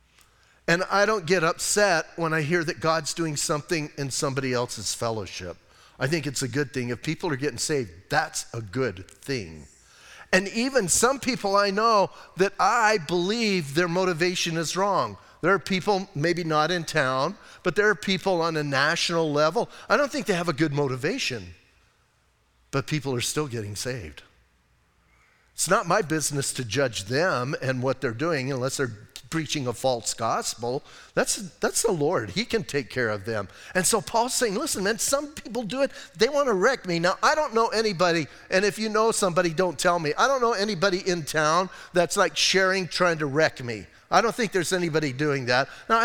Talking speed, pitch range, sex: 195 wpm, 135-195 Hz, male